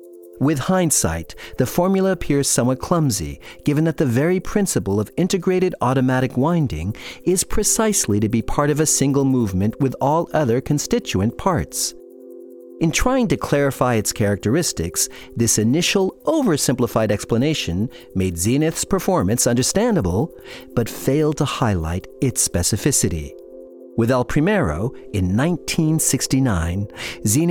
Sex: male